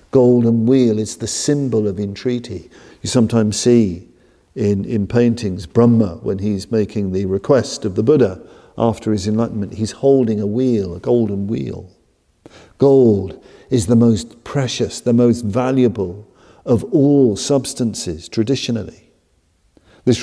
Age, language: 50-69, English